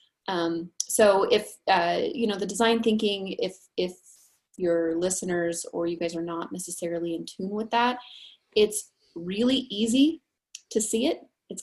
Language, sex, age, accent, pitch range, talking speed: English, female, 30-49, American, 170-225 Hz, 155 wpm